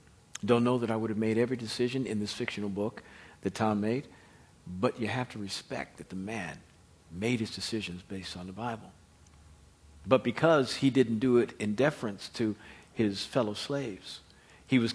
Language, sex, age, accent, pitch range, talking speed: English, male, 50-69, American, 100-125 Hz, 180 wpm